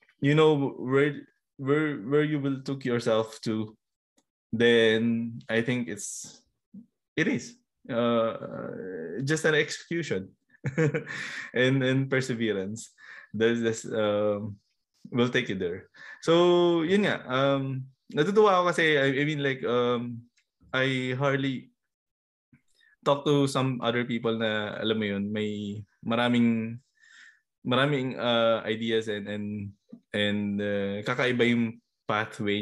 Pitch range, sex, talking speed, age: 110-140 Hz, male, 115 wpm, 20-39